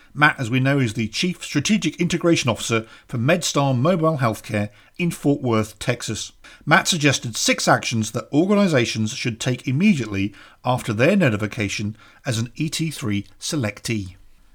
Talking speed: 140 wpm